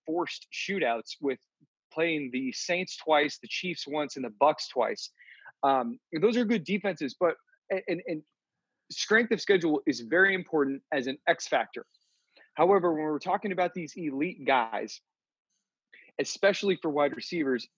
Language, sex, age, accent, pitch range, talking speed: English, male, 30-49, American, 140-180 Hz, 150 wpm